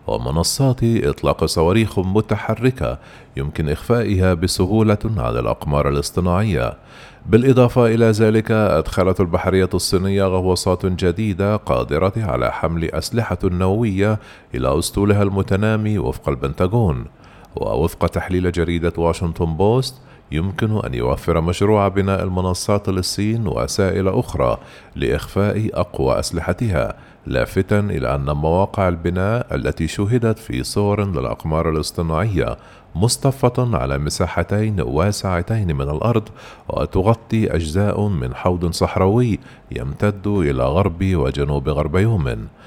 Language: Arabic